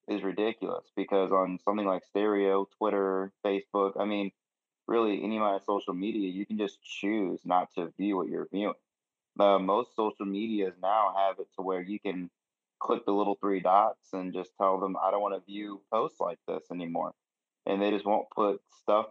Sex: male